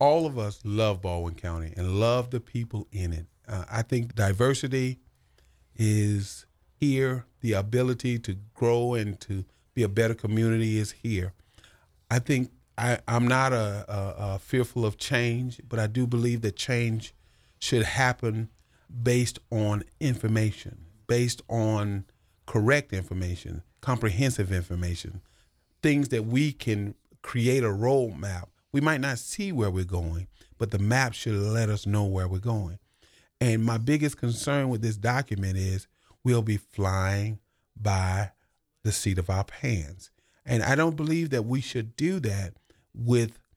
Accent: American